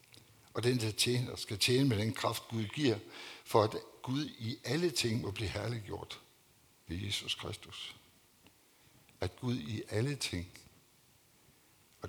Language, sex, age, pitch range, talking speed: Danish, male, 60-79, 100-125 Hz, 140 wpm